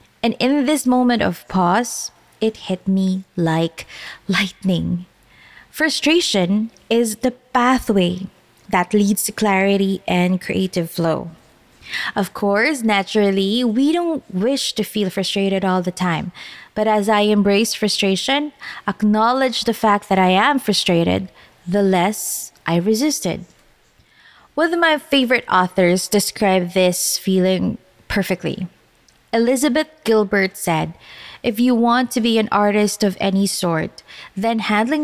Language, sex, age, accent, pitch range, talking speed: English, female, 20-39, Filipino, 190-245 Hz, 125 wpm